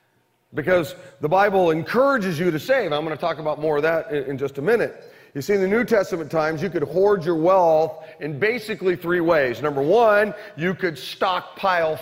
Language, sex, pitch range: English, male, 145-185 Hz